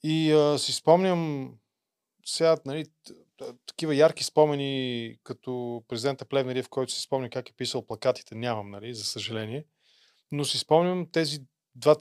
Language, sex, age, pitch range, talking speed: Bulgarian, male, 20-39, 120-145 Hz, 150 wpm